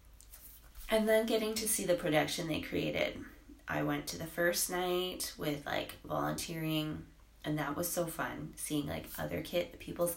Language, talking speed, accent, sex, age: English, 165 wpm, American, female, 20-39